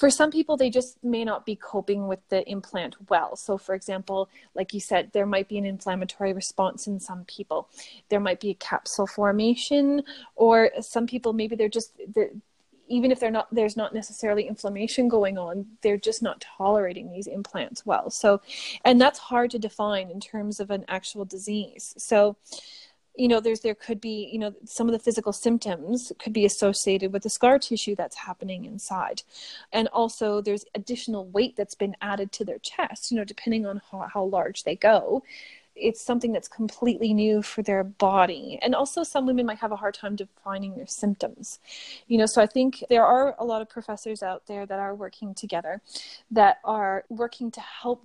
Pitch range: 200-235 Hz